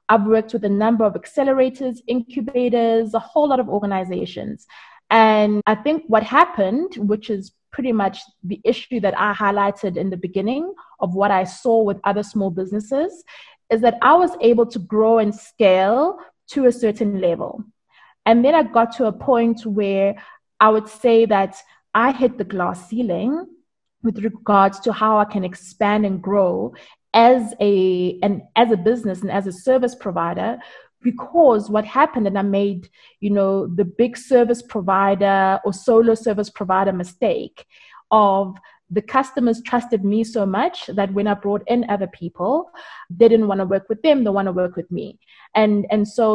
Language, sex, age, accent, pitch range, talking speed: English, female, 20-39, South African, 195-240 Hz, 175 wpm